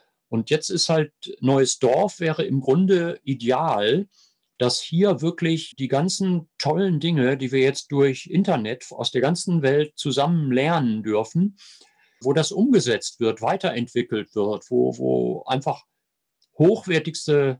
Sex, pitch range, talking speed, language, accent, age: male, 130-175 Hz, 135 wpm, German, German, 50-69